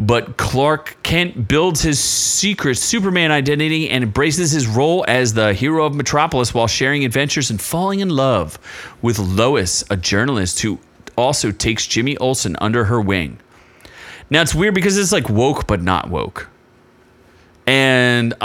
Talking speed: 155 wpm